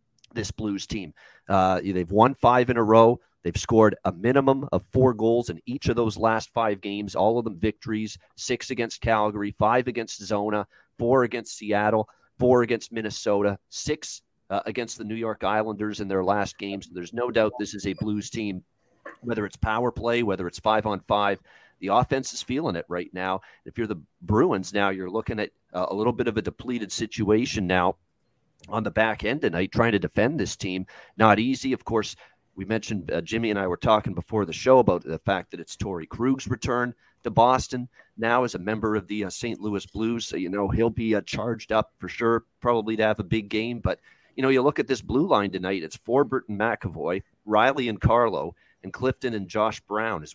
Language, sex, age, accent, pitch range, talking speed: English, male, 40-59, American, 100-120 Hz, 210 wpm